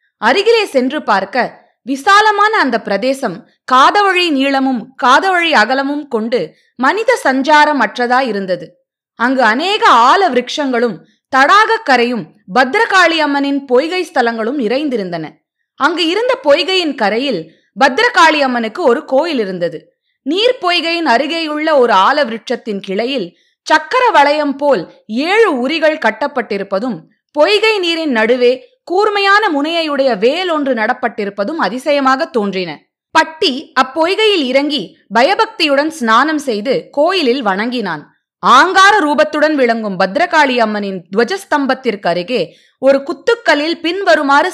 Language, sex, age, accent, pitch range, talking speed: Tamil, female, 20-39, native, 240-330 Hz, 95 wpm